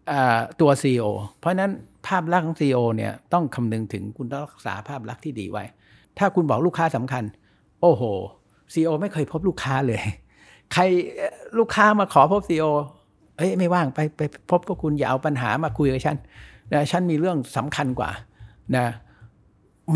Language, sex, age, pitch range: Thai, male, 60-79, 115-155 Hz